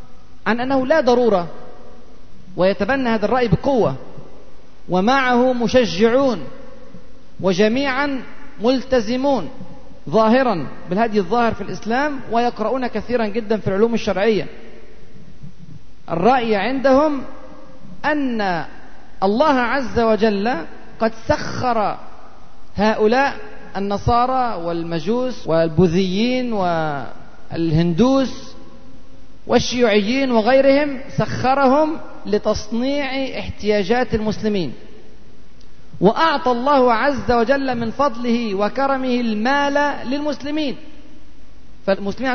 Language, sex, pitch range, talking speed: Arabic, male, 205-260 Hz, 75 wpm